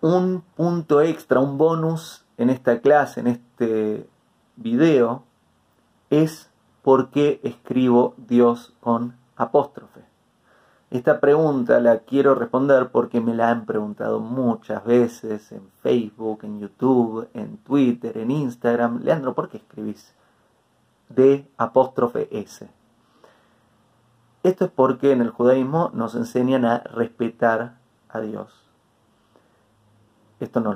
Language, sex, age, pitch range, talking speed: Spanish, male, 30-49, 110-135 Hz, 110 wpm